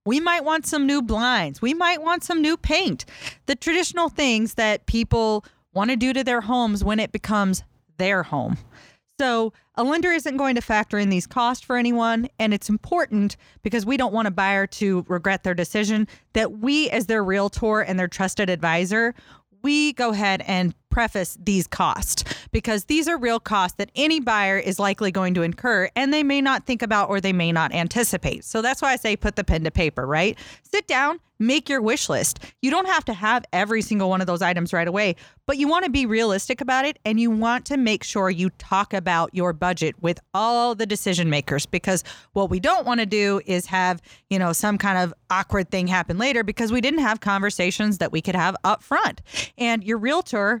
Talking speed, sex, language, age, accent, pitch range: 210 wpm, female, English, 30-49, American, 190-250 Hz